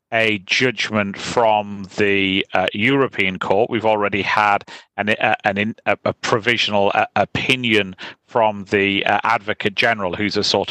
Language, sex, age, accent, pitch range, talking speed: English, male, 40-59, British, 105-140 Hz, 140 wpm